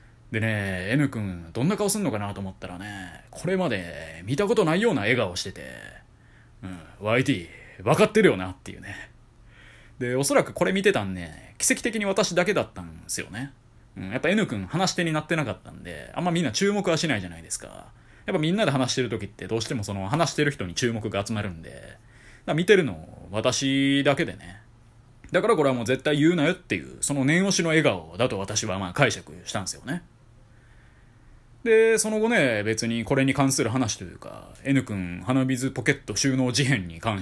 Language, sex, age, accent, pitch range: Japanese, male, 20-39, native, 105-145 Hz